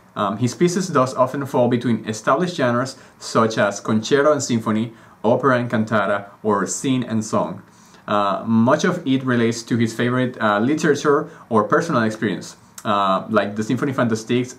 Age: 30-49